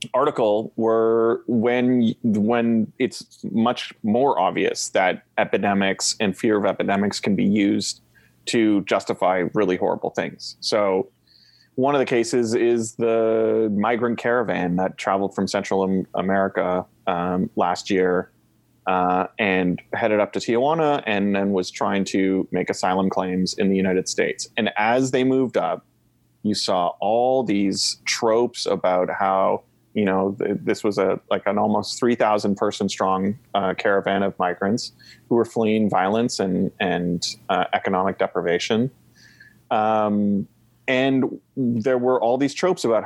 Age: 30-49